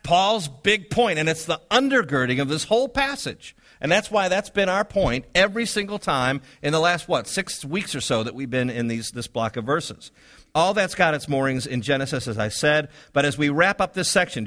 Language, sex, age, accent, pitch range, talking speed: English, male, 50-69, American, 115-170 Hz, 225 wpm